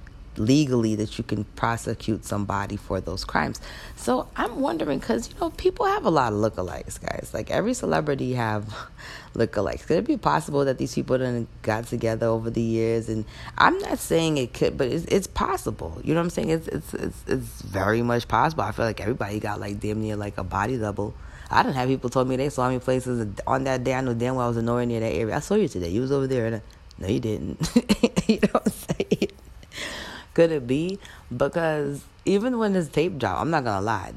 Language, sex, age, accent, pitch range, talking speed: English, female, 20-39, American, 105-140 Hz, 225 wpm